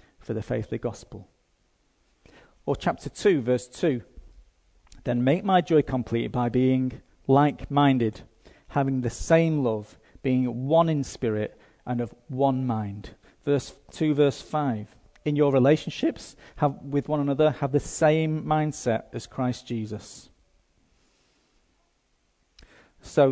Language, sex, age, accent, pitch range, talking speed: English, male, 40-59, British, 115-150 Hz, 125 wpm